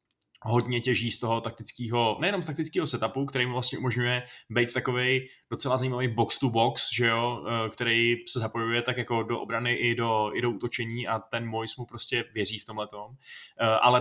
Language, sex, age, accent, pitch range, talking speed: Czech, male, 20-39, native, 110-125 Hz, 185 wpm